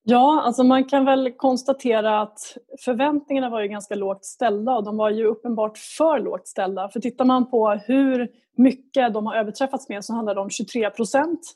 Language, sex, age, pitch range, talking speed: Swedish, female, 20-39, 215-255 Hz, 190 wpm